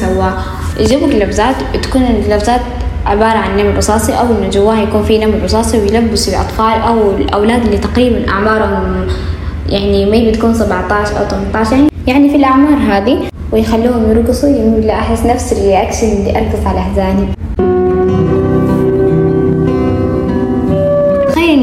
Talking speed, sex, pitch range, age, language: 125 wpm, female, 200-245 Hz, 10-29, Arabic